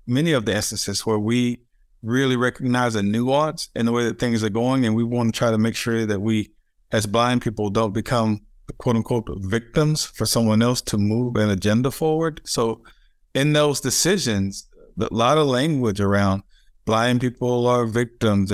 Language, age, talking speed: English, 50-69, 185 wpm